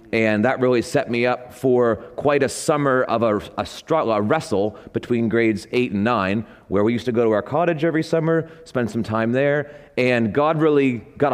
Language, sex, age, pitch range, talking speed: English, male, 30-49, 115-150 Hz, 205 wpm